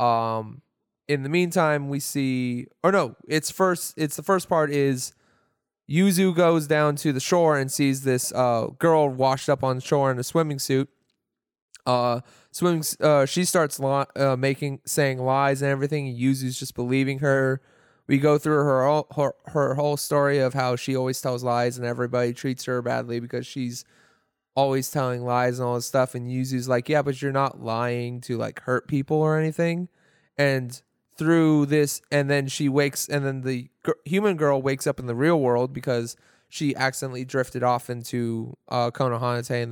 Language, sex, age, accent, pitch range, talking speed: English, male, 20-39, American, 125-145 Hz, 185 wpm